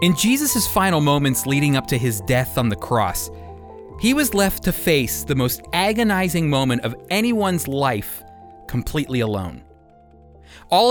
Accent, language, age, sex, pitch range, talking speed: American, English, 30-49, male, 120-195 Hz, 150 wpm